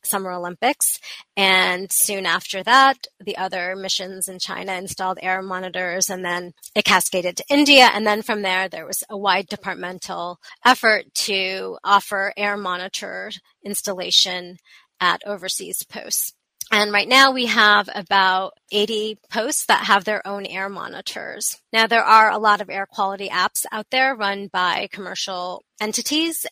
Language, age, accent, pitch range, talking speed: English, 30-49, American, 190-220 Hz, 150 wpm